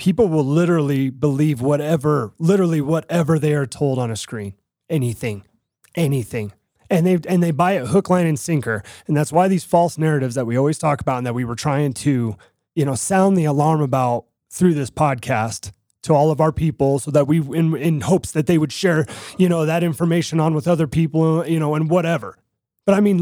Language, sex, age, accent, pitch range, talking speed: English, male, 30-49, American, 130-170 Hz, 210 wpm